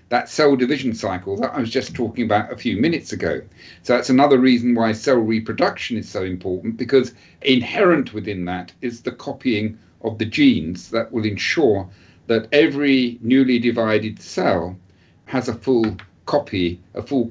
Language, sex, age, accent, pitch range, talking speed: English, male, 50-69, British, 105-135 Hz, 165 wpm